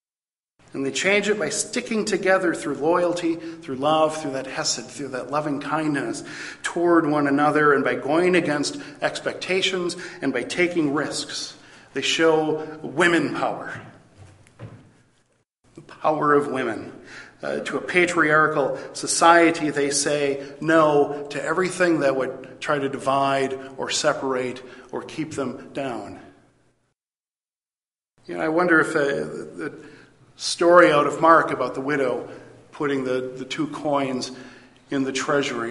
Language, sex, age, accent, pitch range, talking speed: English, male, 50-69, American, 135-160 Hz, 135 wpm